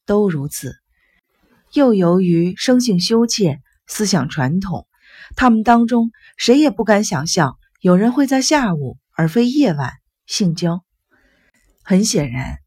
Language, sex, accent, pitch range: Chinese, female, native, 160-225 Hz